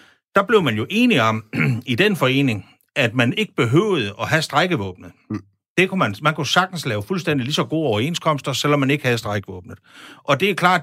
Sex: male